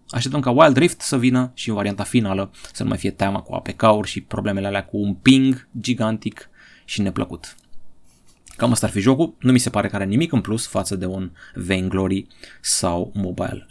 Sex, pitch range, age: male, 100-130 Hz, 30-49